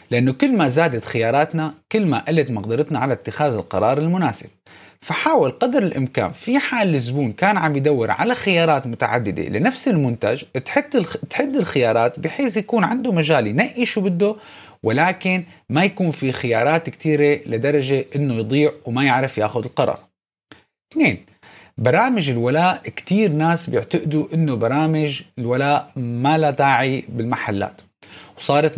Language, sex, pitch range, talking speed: Arabic, male, 125-175 Hz, 130 wpm